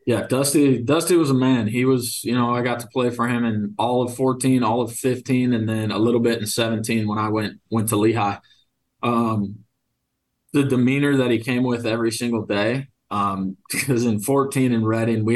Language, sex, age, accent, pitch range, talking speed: English, male, 20-39, American, 105-120 Hz, 205 wpm